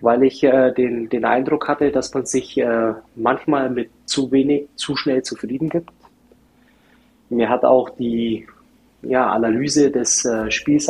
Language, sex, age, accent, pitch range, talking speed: German, male, 20-39, German, 125-145 Hz, 155 wpm